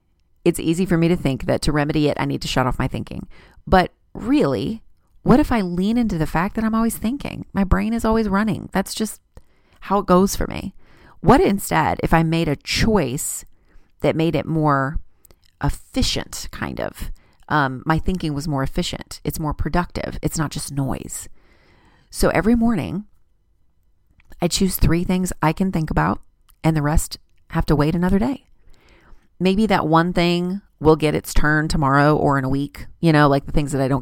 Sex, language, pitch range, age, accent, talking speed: female, English, 140-180 Hz, 30-49, American, 190 wpm